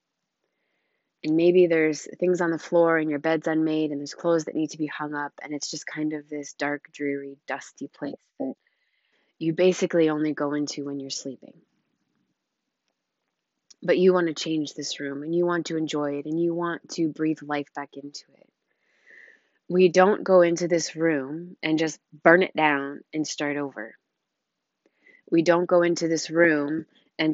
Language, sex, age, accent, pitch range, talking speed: English, female, 20-39, American, 145-165 Hz, 180 wpm